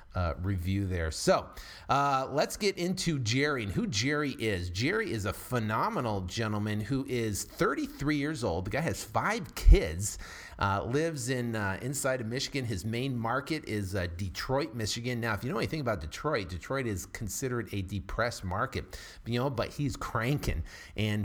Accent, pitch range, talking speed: American, 100-140 Hz, 170 wpm